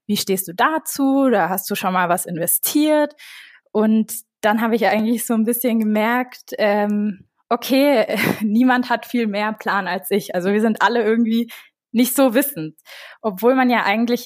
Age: 20-39